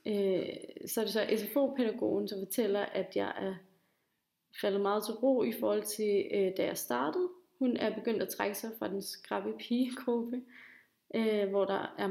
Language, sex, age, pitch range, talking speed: Danish, female, 30-49, 195-240 Hz, 175 wpm